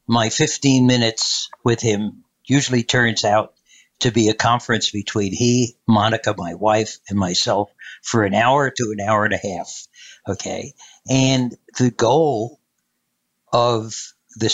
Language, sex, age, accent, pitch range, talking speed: English, male, 60-79, American, 100-120 Hz, 140 wpm